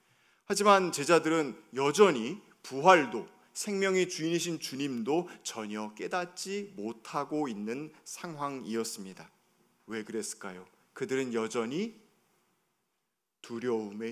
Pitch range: 120-175 Hz